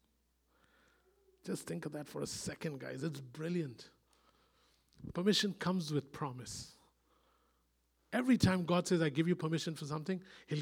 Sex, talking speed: male, 140 wpm